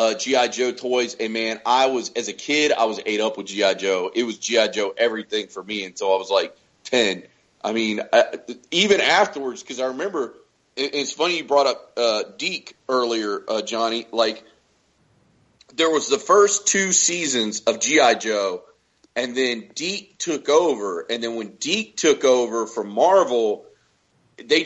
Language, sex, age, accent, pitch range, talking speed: English, male, 40-59, American, 120-165 Hz, 175 wpm